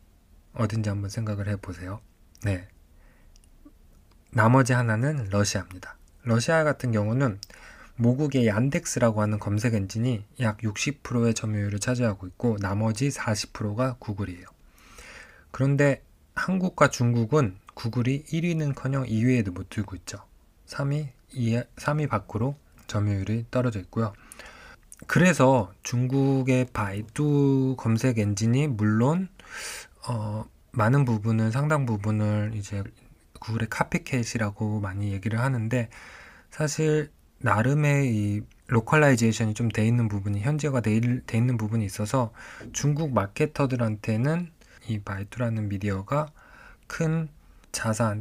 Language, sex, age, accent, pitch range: Korean, male, 20-39, native, 105-130 Hz